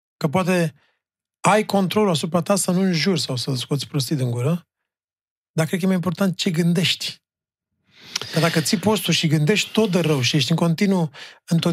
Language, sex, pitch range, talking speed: Romanian, male, 155-190 Hz, 190 wpm